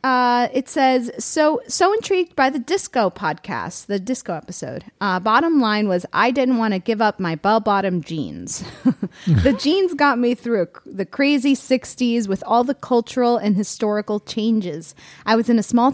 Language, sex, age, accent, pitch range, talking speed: English, female, 30-49, American, 190-250 Hz, 175 wpm